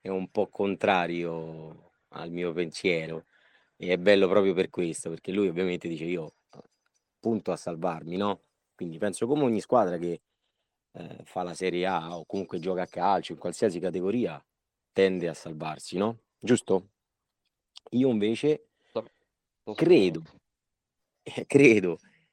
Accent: native